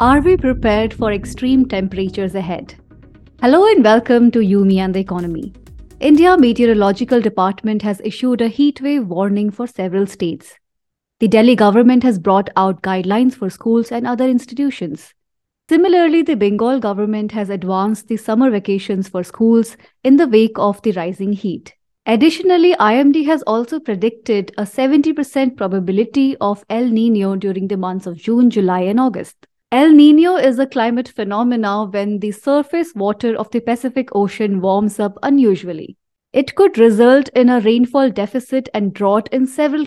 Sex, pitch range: female, 200-260 Hz